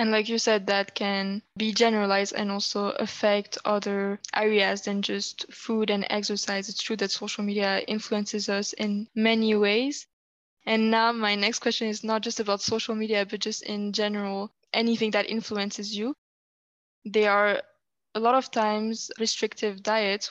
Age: 10-29